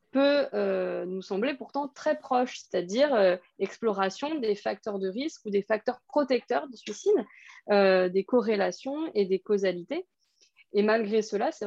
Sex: female